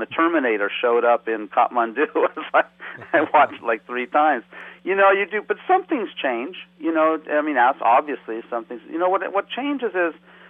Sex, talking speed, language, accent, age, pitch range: male, 185 wpm, English, American, 50-69, 115-155 Hz